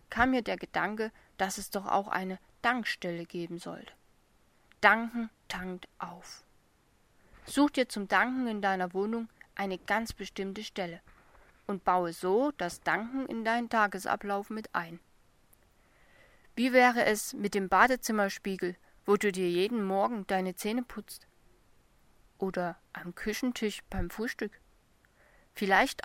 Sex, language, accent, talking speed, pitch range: female, German, German, 130 wpm, 190-230 Hz